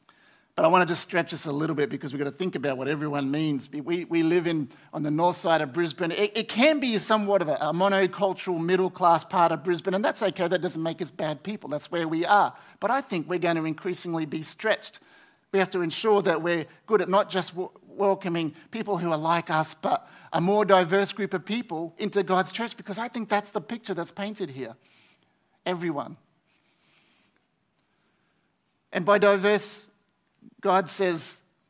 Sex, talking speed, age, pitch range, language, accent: male, 200 wpm, 50-69, 165-200 Hz, English, Australian